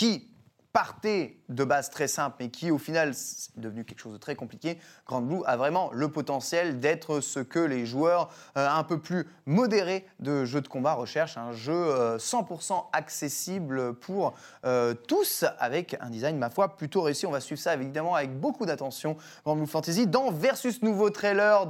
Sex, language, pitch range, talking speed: male, French, 130-185 Hz, 190 wpm